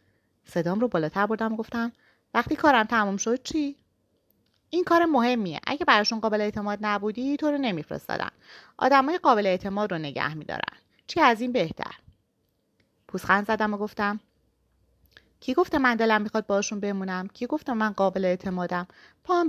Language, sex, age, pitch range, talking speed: Persian, female, 30-49, 180-245 Hz, 150 wpm